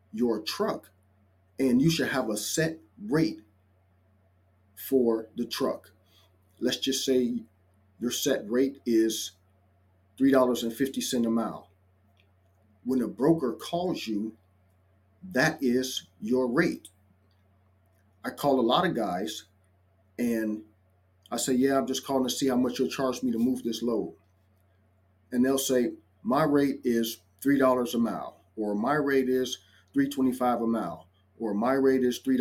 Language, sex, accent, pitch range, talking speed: English, male, American, 95-130 Hz, 135 wpm